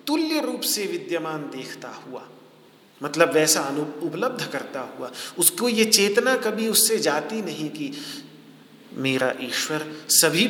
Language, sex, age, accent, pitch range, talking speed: Hindi, male, 40-59, native, 150-255 Hz, 130 wpm